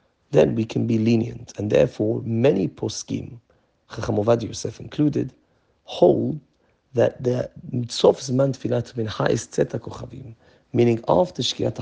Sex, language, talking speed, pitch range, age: male, English, 125 wpm, 110-130 Hz, 40-59